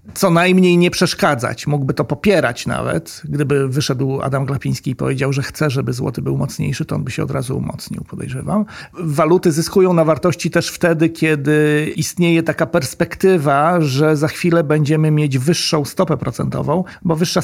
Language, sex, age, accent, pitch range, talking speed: Polish, male, 40-59, native, 145-170 Hz, 165 wpm